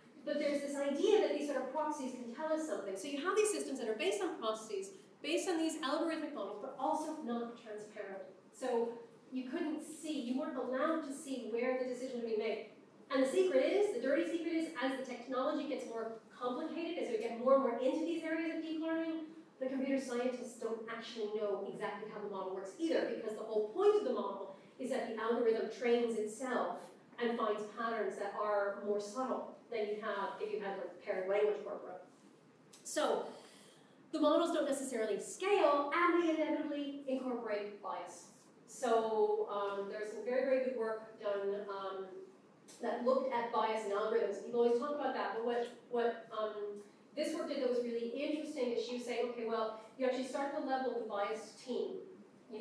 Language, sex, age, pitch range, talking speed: English, female, 40-59, 220-295 Hz, 200 wpm